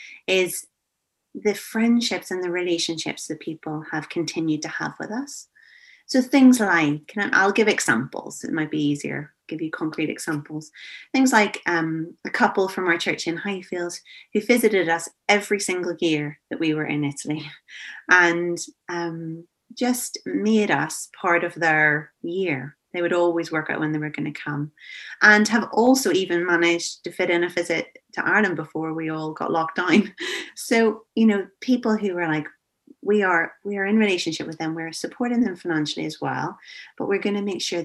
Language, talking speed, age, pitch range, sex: English, 180 wpm, 30-49, 160-210 Hz, female